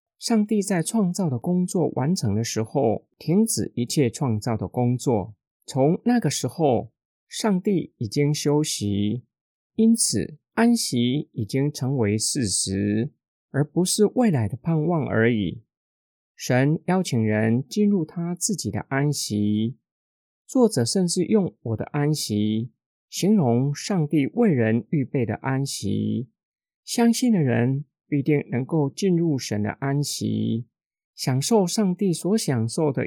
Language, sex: Chinese, male